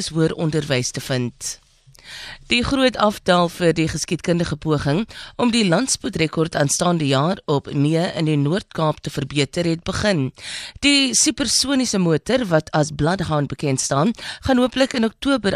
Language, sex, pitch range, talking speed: English, female, 150-205 Hz, 145 wpm